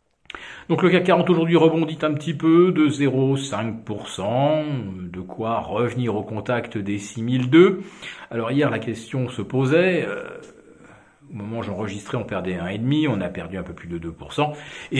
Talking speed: 160 wpm